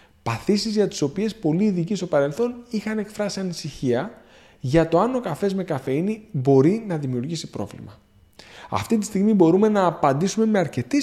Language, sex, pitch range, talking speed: Greek, male, 130-210 Hz, 165 wpm